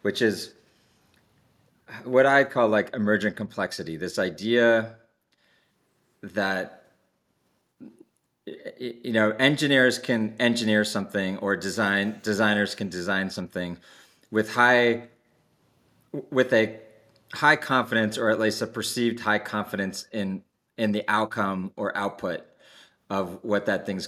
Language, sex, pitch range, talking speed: English, male, 105-120 Hz, 115 wpm